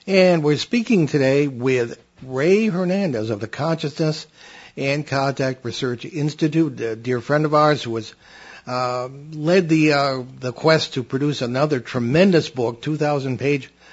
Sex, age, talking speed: male, 60-79, 140 wpm